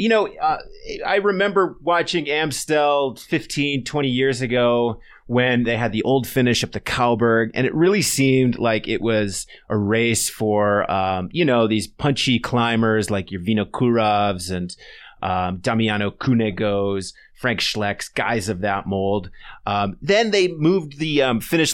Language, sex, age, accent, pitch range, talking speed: English, male, 30-49, American, 105-140 Hz, 155 wpm